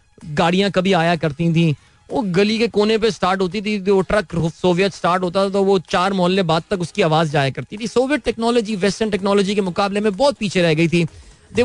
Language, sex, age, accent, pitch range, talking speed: Hindi, male, 30-49, native, 160-205 Hz, 225 wpm